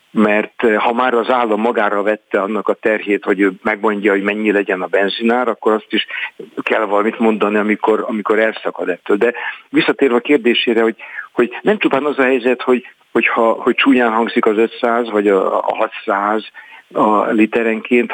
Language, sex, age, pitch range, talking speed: Hungarian, male, 50-69, 105-125 Hz, 170 wpm